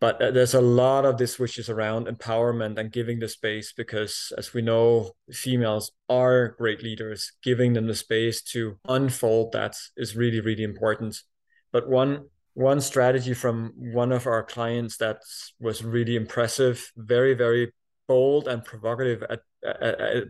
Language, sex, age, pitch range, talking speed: English, male, 20-39, 115-130 Hz, 160 wpm